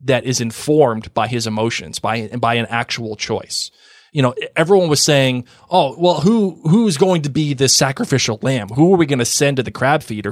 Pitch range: 115-170 Hz